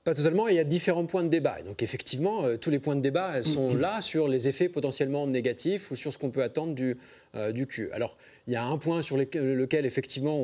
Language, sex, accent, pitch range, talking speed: French, male, French, 130-175 Hz, 260 wpm